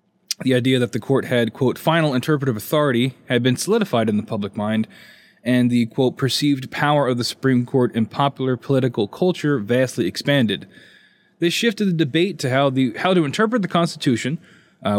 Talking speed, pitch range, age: 180 wpm, 120-155 Hz, 20-39